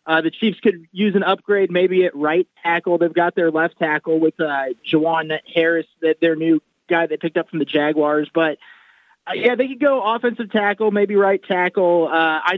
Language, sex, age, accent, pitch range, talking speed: English, male, 30-49, American, 160-195 Hz, 200 wpm